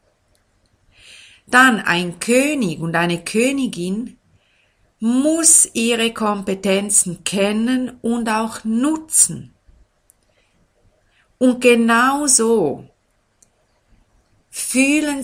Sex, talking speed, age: female, 65 wpm, 50-69